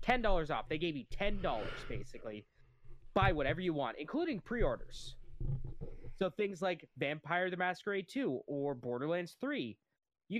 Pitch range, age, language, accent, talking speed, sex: 125-175 Hz, 20-39, English, American, 150 wpm, male